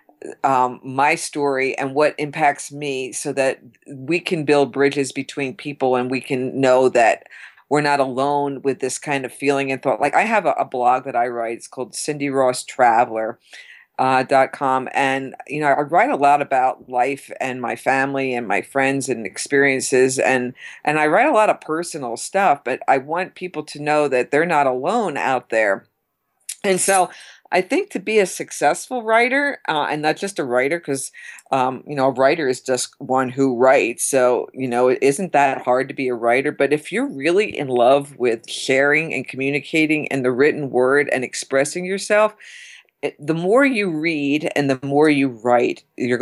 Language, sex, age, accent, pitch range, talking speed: English, female, 50-69, American, 130-155 Hz, 190 wpm